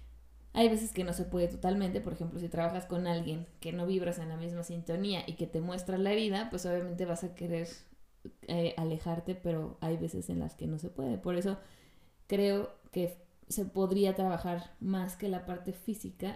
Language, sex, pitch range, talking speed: Spanish, female, 175-200 Hz, 200 wpm